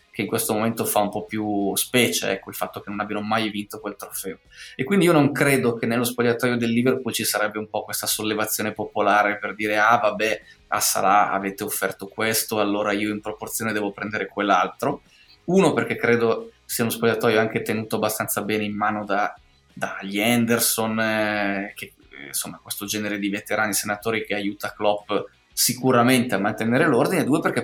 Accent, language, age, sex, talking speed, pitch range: native, Italian, 20-39, male, 180 wpm, 105-125 Hz